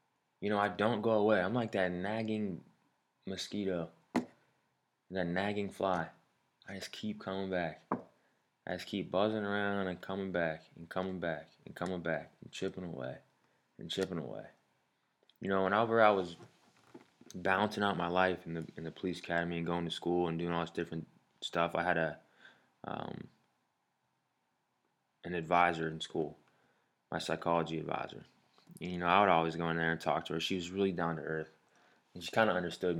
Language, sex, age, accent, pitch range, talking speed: English, male, 20-39, American, 85-100 Hz, 175 wpm